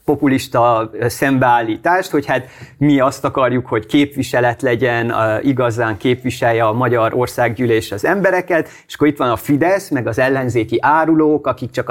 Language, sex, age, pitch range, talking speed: Hungarian, male, 30-49, 120-145 Hz, 145 wpm